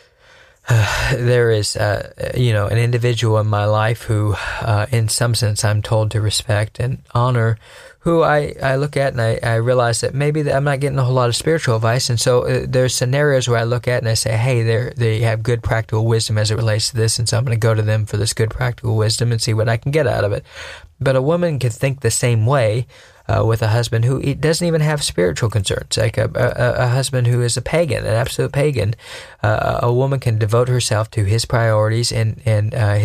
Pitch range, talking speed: 110-130 Hz, 240 wpm